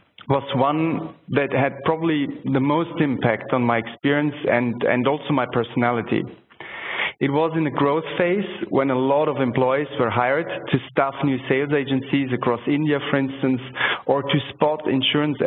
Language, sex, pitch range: English, male, 130-150 Hz